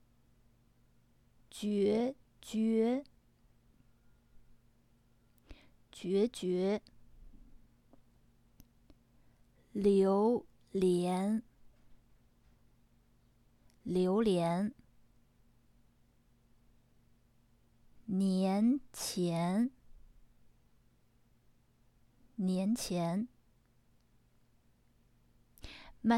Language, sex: French, female